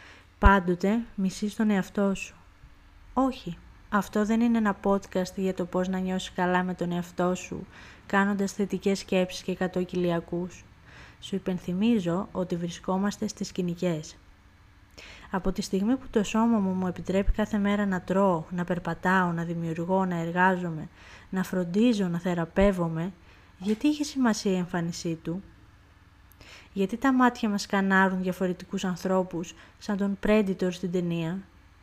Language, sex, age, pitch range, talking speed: Greek, female, 20-39, 170-205 Hz, 140 wpm